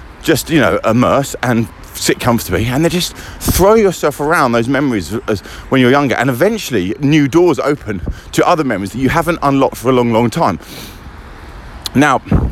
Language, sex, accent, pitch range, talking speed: English, male, British, 100-130 Hz, 175 wpm